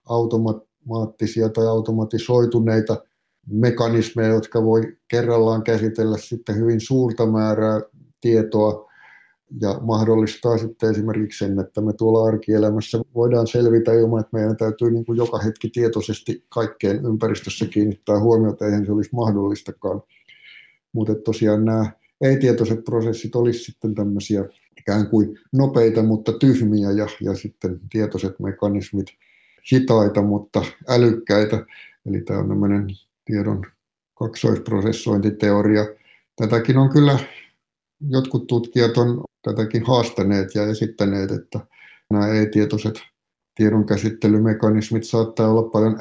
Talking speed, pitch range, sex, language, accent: 110 wpm, 105-115 Hz, male, Finnish, native